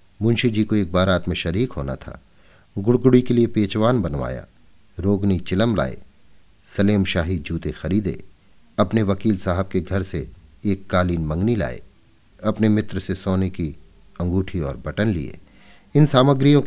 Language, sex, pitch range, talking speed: Hindi, male, 85-105 Hz, 150 wpm